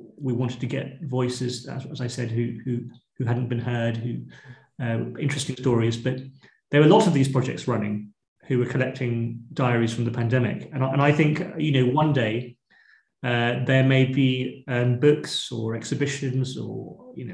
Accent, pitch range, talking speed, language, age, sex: British, 115-135 Hz, 185 wpm, English, 30-49, male